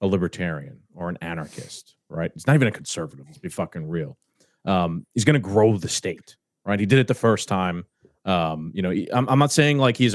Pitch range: 100-130 Hz